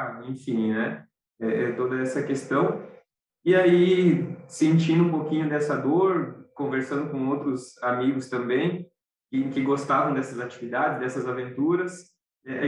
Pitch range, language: 125-160 Hz, Portuguese